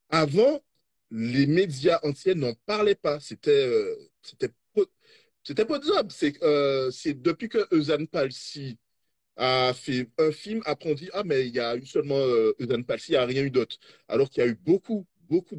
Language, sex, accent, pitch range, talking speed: French, male, French, 130-210 Hz, 195 wpm